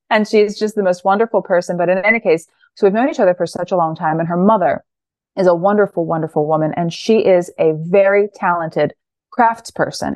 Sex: female